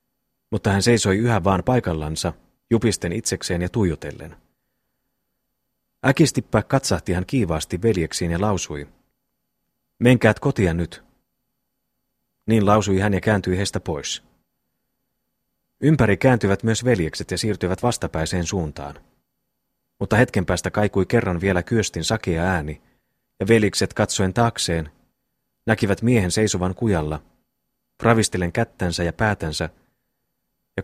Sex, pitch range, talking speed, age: male, 85-115 Hz, 110 wpm, 30-49